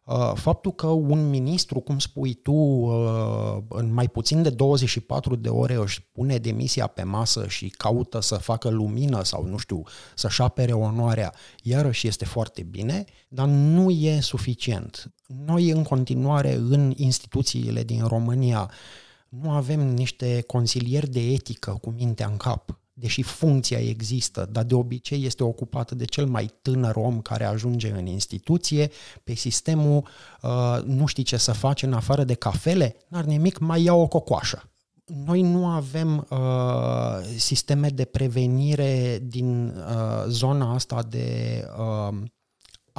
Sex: male